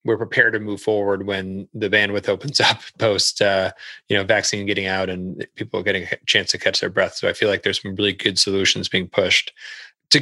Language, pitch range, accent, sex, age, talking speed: English, 100-115 Hz, American, male, 30-49, 225 wpm